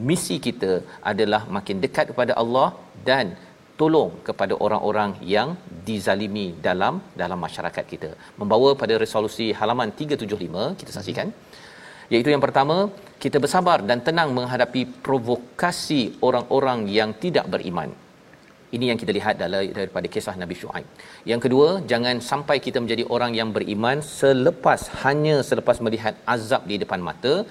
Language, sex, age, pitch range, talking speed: Malayalam, male, 40-59, 110-140 Hz, 135 wpm